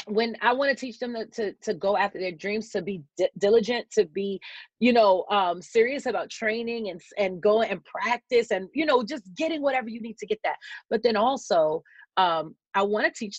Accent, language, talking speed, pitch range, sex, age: American, English, 220 wpm, 195-240 Hz, female, 30-49